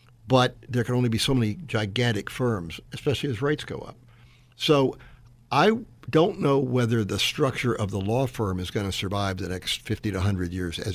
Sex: male